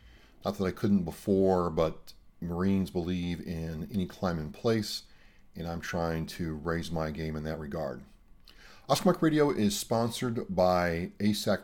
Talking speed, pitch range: 150 wpm, 90-115 Hz